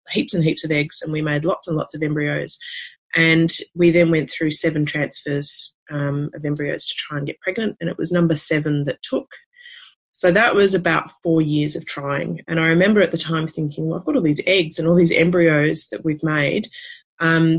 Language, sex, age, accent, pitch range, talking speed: English, female, 30-49, Australian, 150-180 Hz, 220 wpm